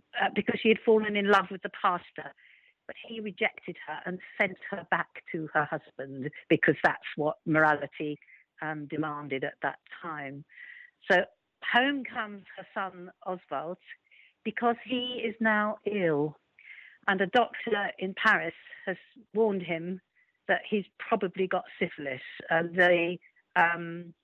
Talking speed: 140 wpm